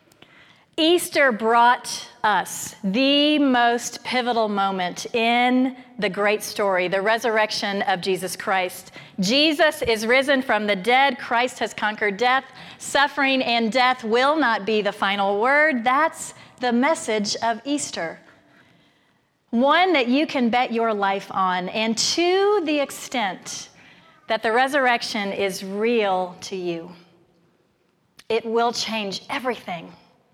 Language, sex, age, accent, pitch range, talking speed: English, female, 40-59, American, 200-245 Hz, 125 wpm